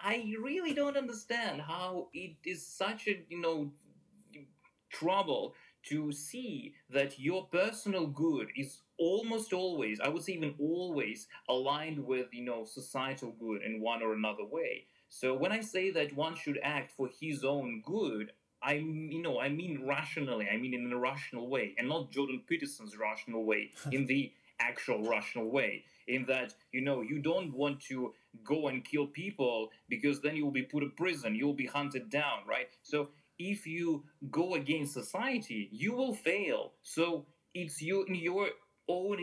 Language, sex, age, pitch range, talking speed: English, male, 30-49, 125-175 Hz, 170 wpm